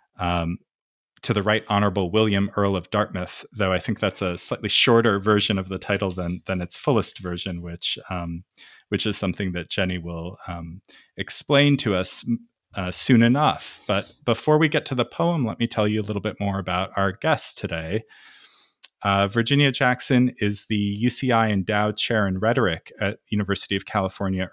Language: English